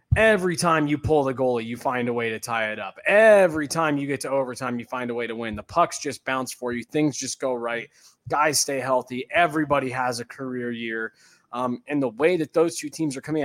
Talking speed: 240 wpm